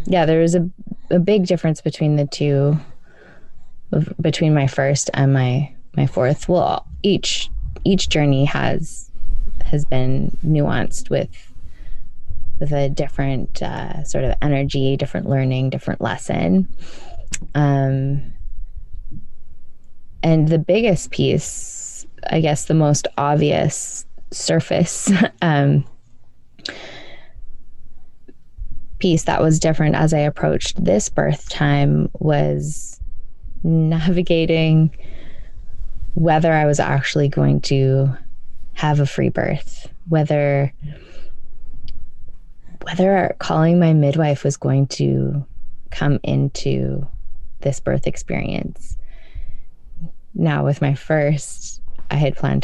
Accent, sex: American, female